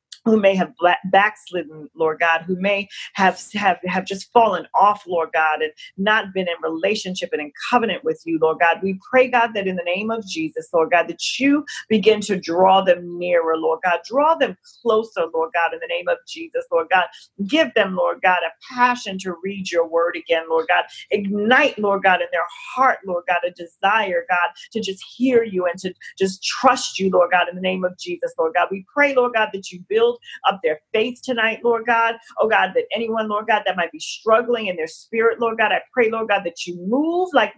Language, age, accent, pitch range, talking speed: English, 40-59, American, 180-245 Hz, 220 wpm